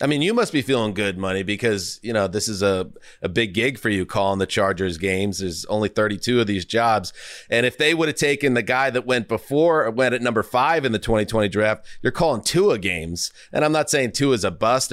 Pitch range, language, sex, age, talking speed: 100-130 Hz, English, male, 30-49, 240 wpm